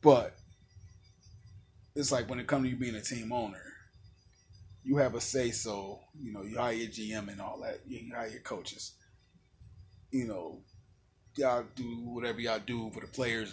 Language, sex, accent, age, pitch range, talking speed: English, male, American, 20-39, 95-130 Hz, 175 wpm